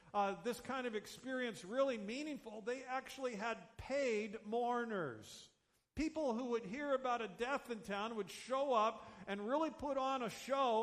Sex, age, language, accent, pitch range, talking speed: male, 50-69, English, American, 215-275 Hz, 165 wpm